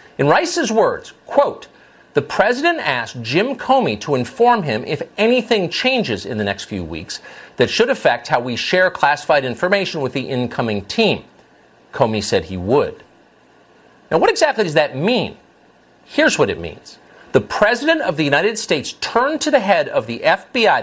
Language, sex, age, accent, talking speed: English, male, 40-59, American, 170 wpm